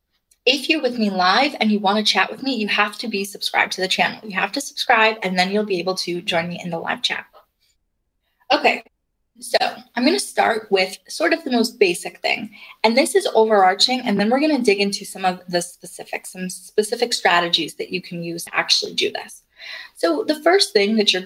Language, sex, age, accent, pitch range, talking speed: English, female, 10-29, American, 195-260 Hz, 230 wpm